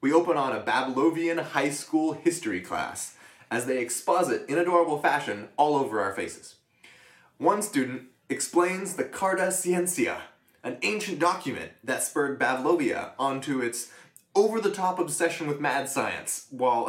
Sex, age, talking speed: male, 20-39, 140 wpm